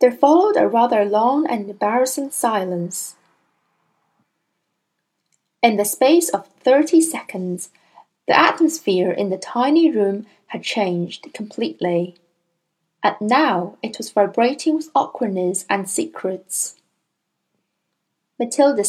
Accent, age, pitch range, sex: British, 10-29, 205-330 Hz, female